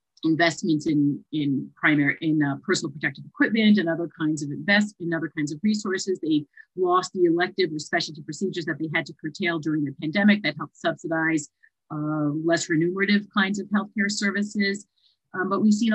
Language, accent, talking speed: English, American, 180 wpm